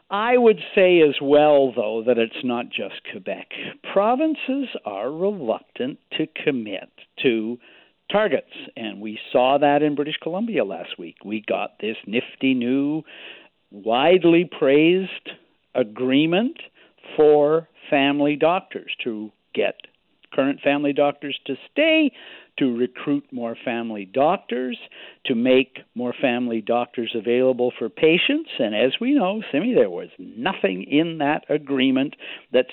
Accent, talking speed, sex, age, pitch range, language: American, 130 wpm, male, 60-79, 130-190 Hz, English